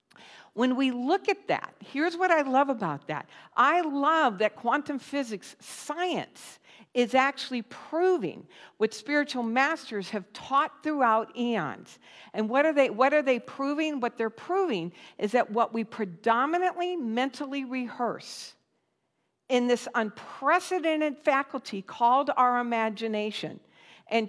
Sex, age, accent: female, 50-69, American